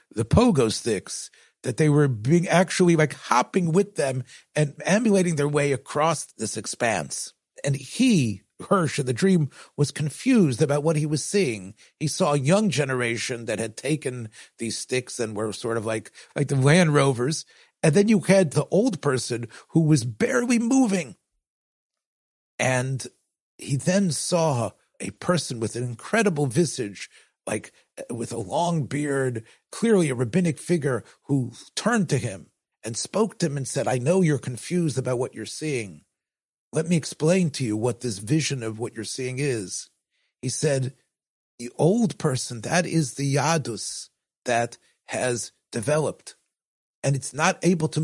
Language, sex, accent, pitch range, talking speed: English, male, American, 125-170 Hz, 160 wpm